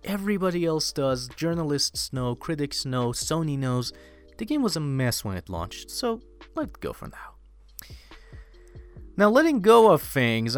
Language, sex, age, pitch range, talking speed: English, male, 30-49, 110-150 Hz, 155 wpm